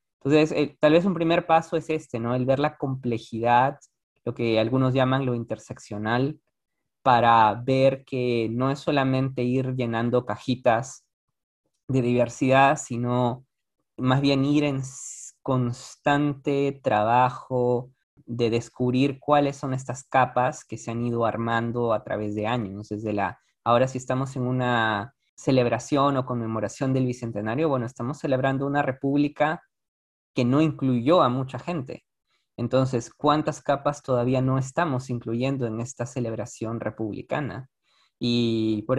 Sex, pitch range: male, 120-140 Hz